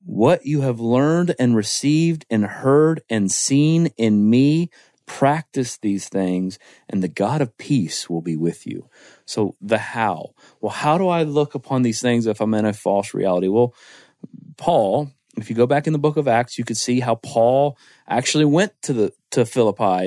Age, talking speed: 30-49, 190 wpm